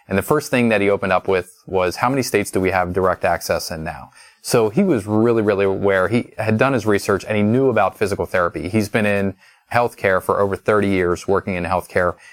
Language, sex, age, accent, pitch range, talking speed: English, male, 30-49, American, 95-110 Hz, 235 wpm